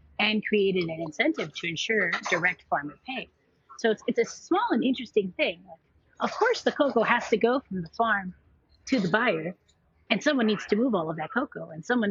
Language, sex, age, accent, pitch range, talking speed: English, female, 30-49, American, 170-220 Hz, 205 wpm